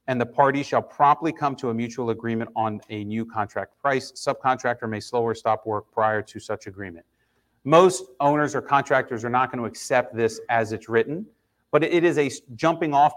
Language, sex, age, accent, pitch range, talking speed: English, male, 30-49, American, 110-135 Hz, 200 wpm